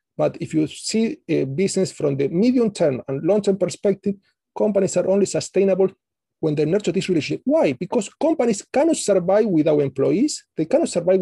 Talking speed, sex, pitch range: 165 wpm, male, 165-215 Hz